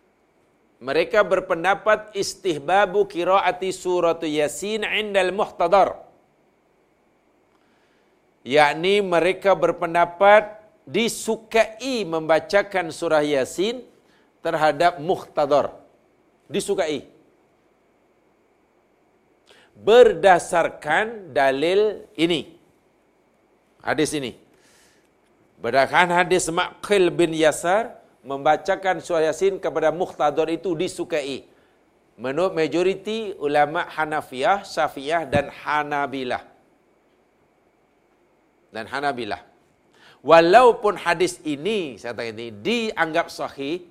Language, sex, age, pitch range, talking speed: Malayalam, male, 60-79, 155-210 Hz, 70 wpm